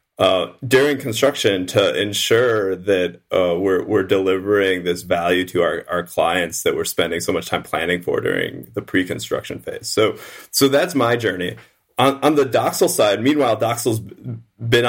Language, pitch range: English, 95-130 Hz